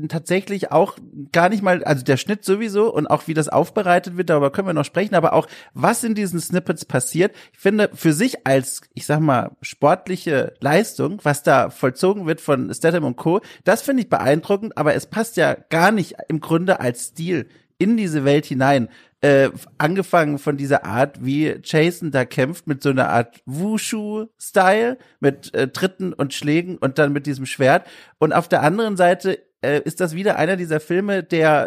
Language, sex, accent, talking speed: German, male, German, 190 wpm